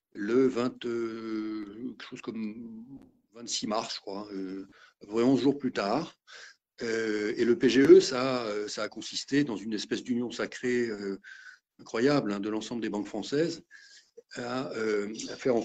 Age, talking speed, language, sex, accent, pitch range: 50-69, 150 wpm, French, male, French, 110-130 Hz